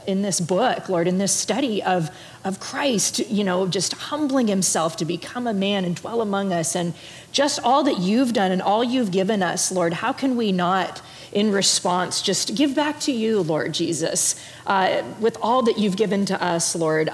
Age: 40-59